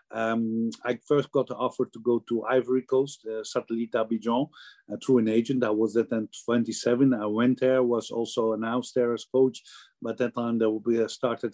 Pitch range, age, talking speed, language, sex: 110-125 Hz, 50-69, 190 wpm, English, male